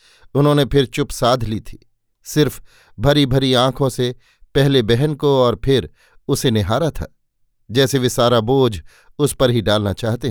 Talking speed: 165 wpm